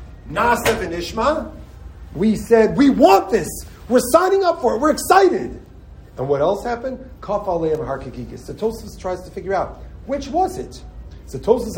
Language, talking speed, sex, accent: English, 145 wpm, male, American